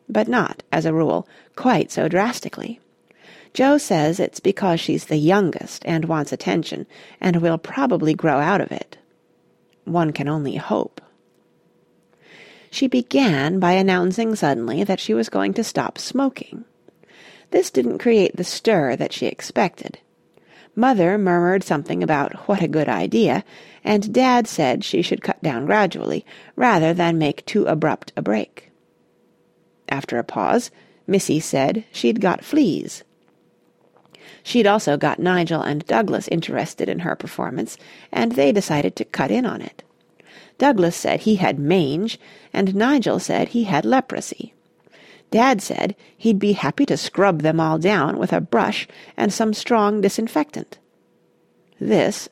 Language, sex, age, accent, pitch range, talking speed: English, female, 40-59, American, 160-225 Hz, 145 wpm